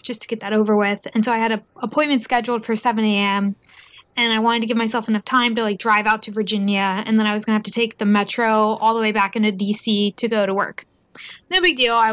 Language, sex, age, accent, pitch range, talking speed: English, female, 10-29, American, 215-250 Hz, 265 wpm